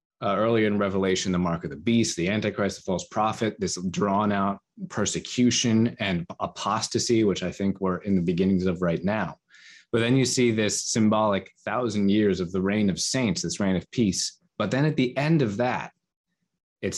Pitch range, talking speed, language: 95-120 Hz, 195 wpm, English